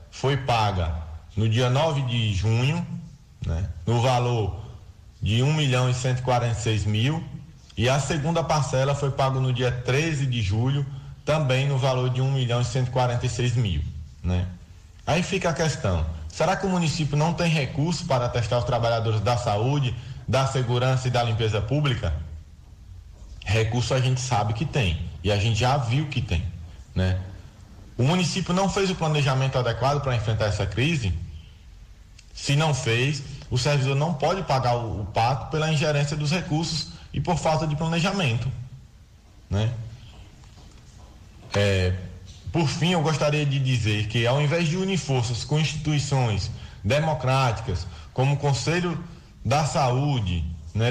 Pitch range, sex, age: 105-145 Hz, male, 20-39